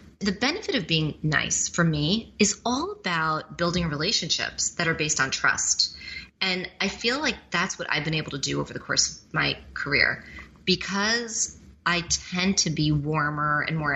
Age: 30-49